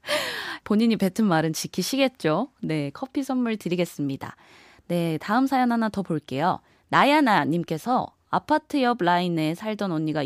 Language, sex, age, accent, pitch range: Korean, female, 20-39, native, 165-240 Hz